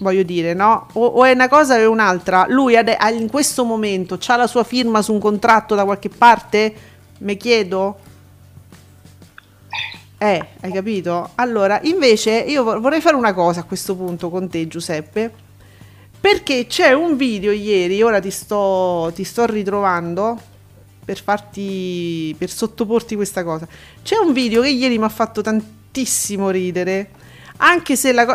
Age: 40-59